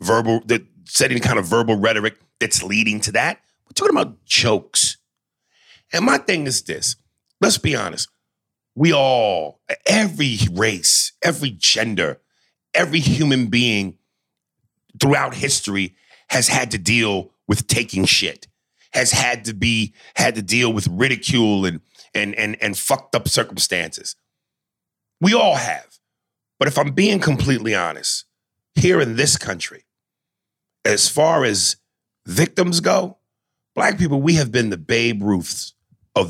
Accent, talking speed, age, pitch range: American, 140 wpm, 40-59, 110-150 Hz